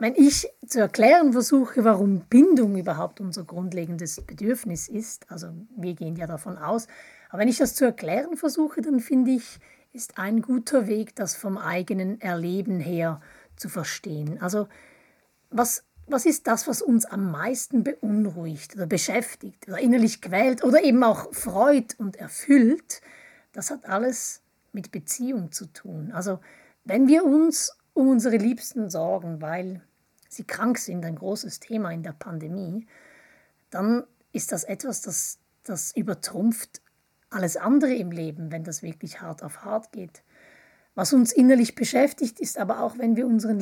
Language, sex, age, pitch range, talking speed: German, female, 30-49, 185-260 Hz, 155 wpm